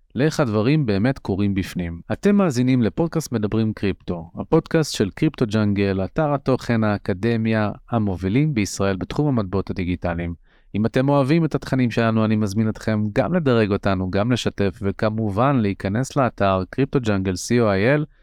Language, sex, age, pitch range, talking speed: Hebrew, male, 30-49, 95-125 Hz, 130 wpm